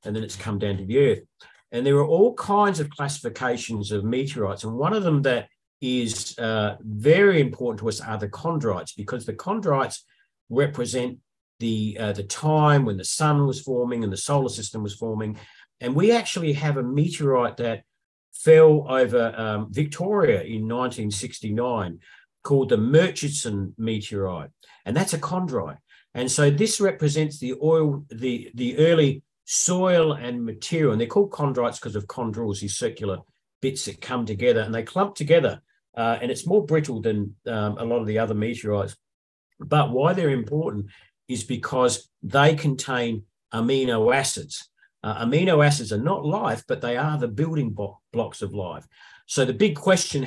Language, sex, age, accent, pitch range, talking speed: English, male, 50-69, Australian, 110-150 Hz, 170 wpm